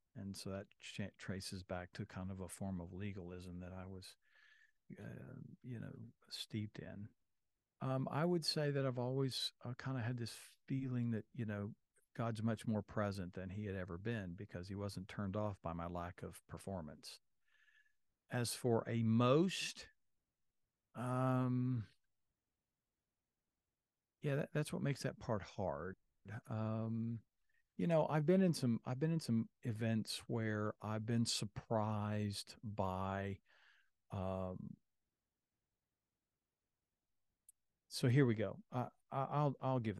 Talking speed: 145 wpm